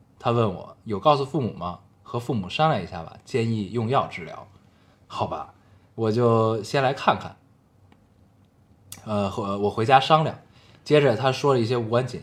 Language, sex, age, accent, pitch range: Chinese, male, 20-39, native, 100-130 Hz